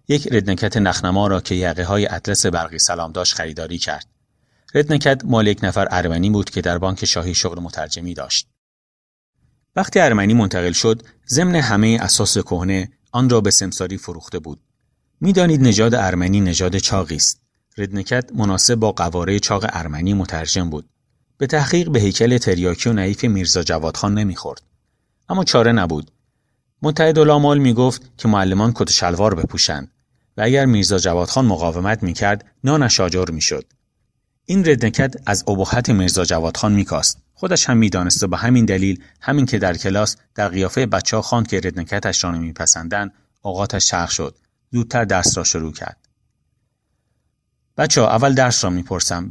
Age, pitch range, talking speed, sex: 30-49, 90-120 Hz, 150 wpm, male